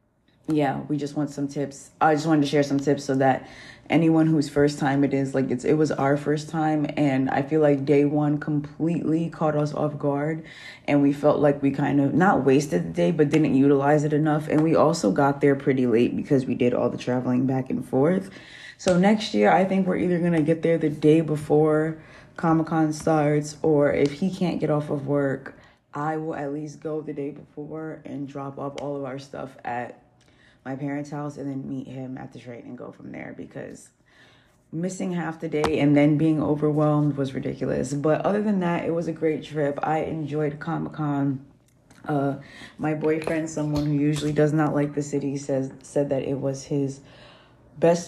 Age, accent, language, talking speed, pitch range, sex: 20-39, American, English, 210 wpm, 140-155 Hz, female